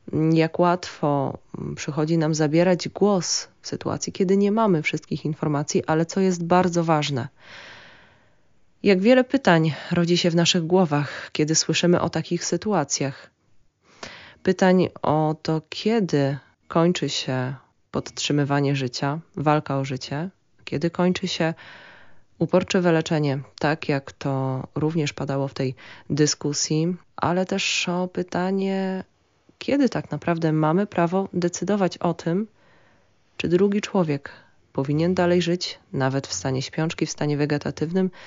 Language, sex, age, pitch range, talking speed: Polish, female, 20-39, 145-180 Hz, 125 wpm